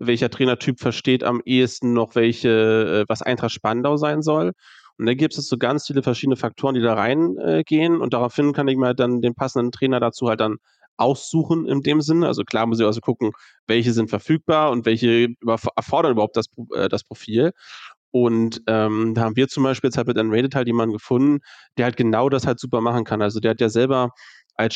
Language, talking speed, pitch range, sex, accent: German, 210 wpm, 115-135 Hz, male, German